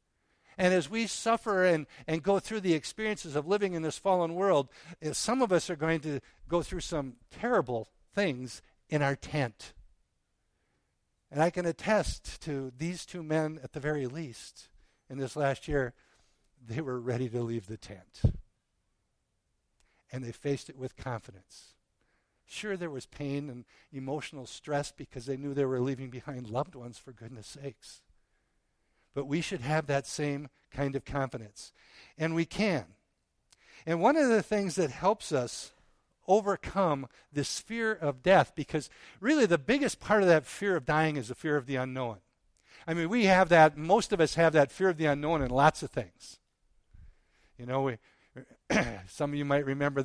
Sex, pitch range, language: male, 130-165 Hz, English